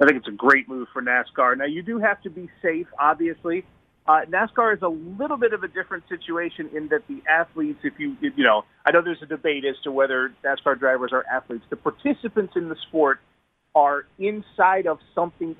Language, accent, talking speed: English, American, 215 wpm